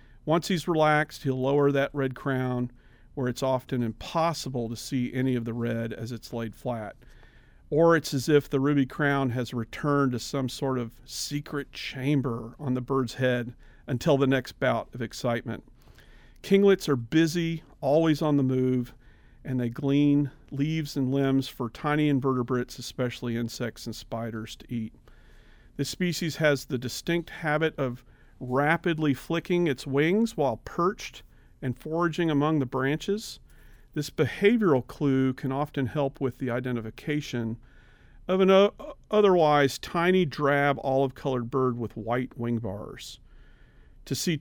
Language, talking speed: English, 145 wpm